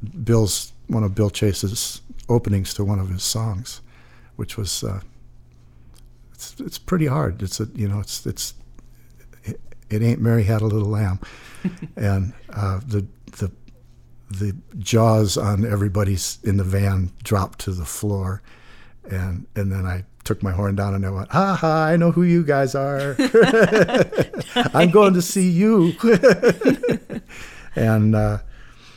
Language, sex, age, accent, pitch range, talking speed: English, male, 60-79, American, 100-115 Hz, 150 wpm